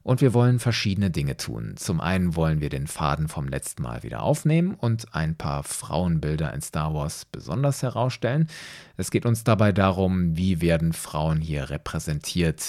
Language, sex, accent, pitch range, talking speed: German, male, German, 95-135 Hz, 170 wpm